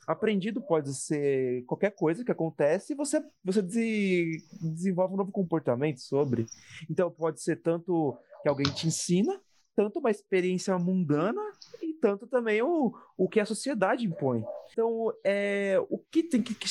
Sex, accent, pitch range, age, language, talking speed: male, Brazilian, 135-205 Hz, 30-49, Portuguese, 155 wpm